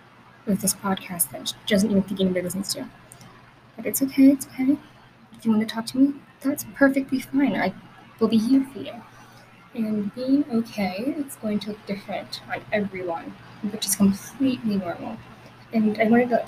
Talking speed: 185 wpm